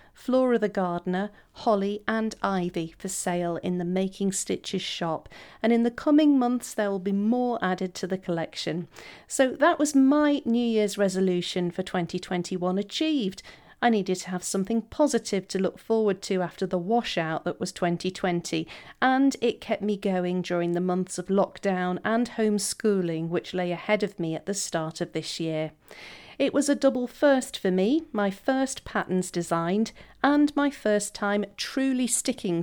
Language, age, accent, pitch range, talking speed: English, 40-59, British, 175-230 Hz, 170 wpm